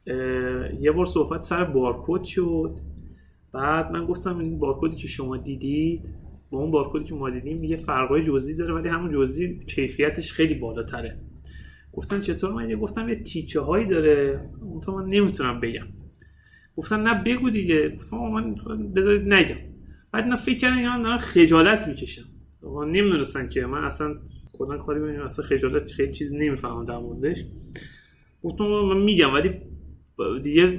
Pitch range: 135-195 Hz